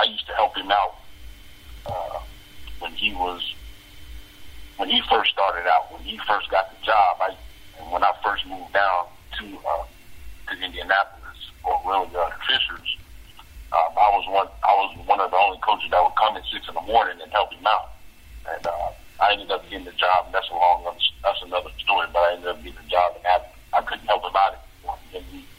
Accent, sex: American, male